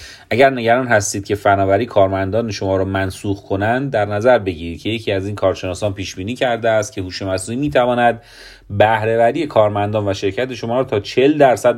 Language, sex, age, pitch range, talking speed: Persian, male, 30-49, 100-125 Hz, 180 wpm